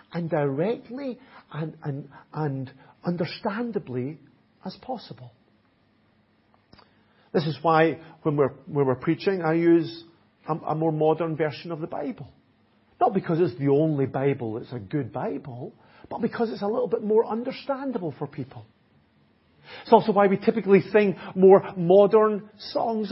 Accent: British